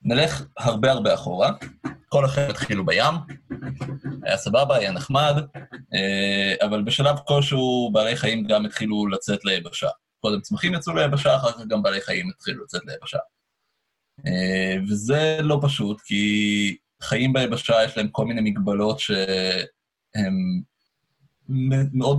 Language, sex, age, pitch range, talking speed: Hebrew, male, 20-39, 105-145 Hz, 125 wpm